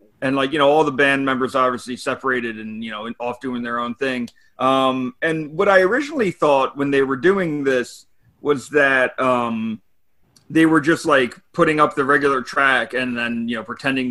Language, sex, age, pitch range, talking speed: English, male, 30-49, 120-150 Hz, 195 wpm